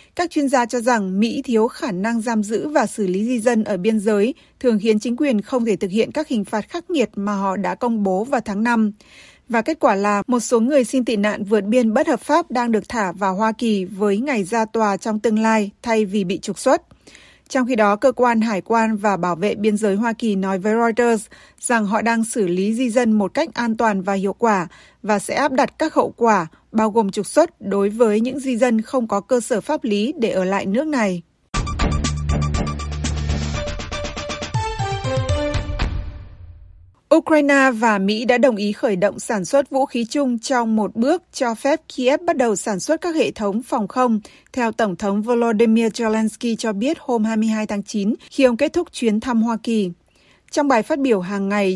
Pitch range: 205-250 Hz